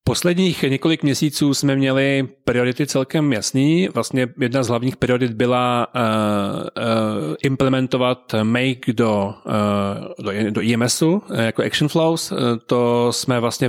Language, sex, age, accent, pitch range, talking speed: Czech, male, 30-49, native, 115-130 Hz, 120 wpm